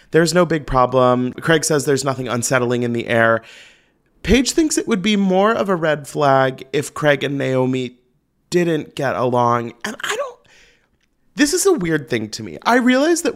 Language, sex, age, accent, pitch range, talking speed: English, male, 30-49, American, 120-165 Hz, 190 wpm